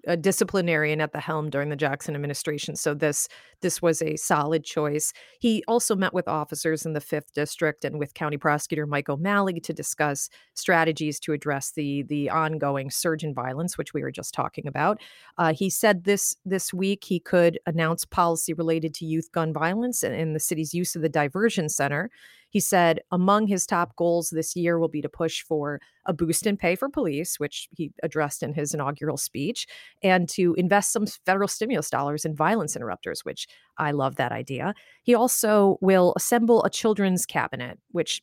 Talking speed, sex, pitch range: 190 wpm, female, 150-190 Hz